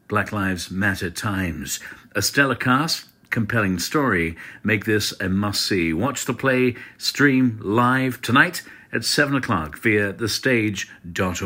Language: English